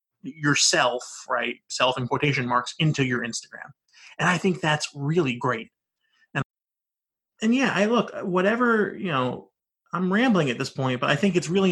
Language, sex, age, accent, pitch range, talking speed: English, male, 20-39, American, 135-195 Hz, 170 wpm